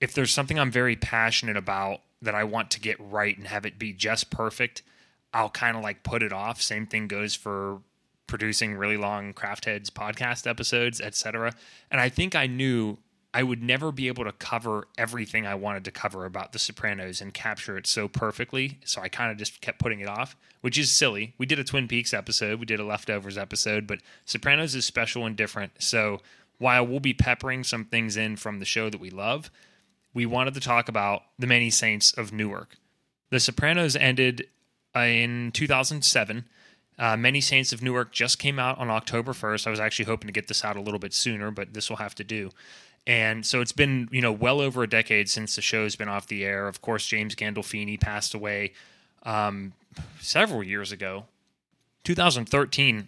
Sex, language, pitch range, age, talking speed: male, English, 105-125 Hz, 20-39, 200 wpm